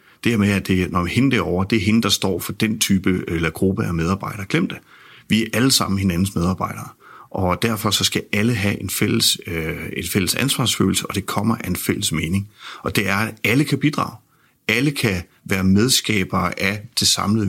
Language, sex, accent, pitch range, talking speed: Danish, male, native, 95-115 Hz, 215 wpm